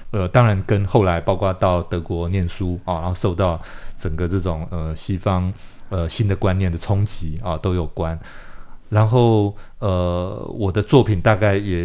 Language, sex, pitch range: Chinese, male, 90-110 Hz